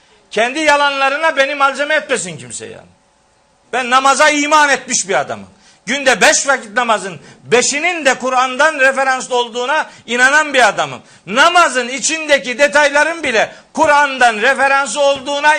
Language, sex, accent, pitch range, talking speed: Turkish, male, native, 235-295 Hz, 125 wpm